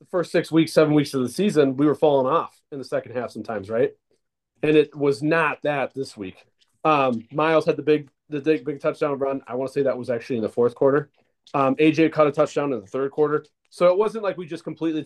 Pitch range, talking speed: 135-165 Hz, 250 wpm